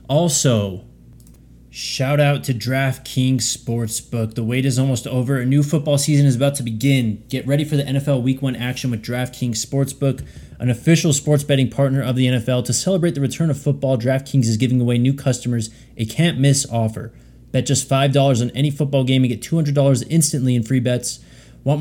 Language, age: English, 20-39